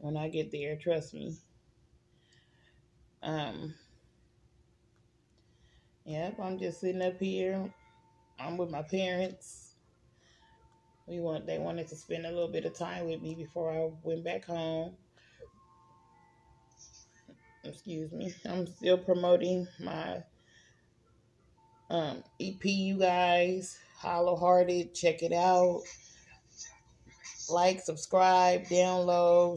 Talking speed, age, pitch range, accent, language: 110 wpm, 20-39, 160-180 Hz, American, English